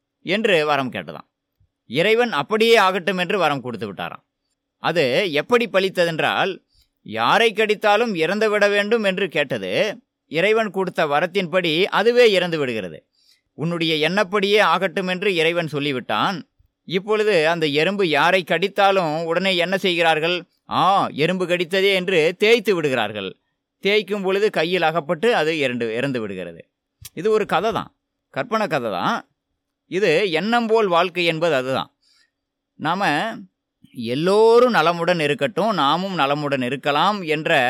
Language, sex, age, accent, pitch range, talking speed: Tamil, male, 20-39, native, 160-215 Hz, 110 wpm